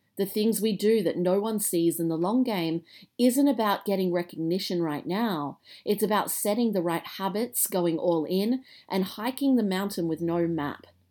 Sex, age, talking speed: female, 40-59, 185 wpm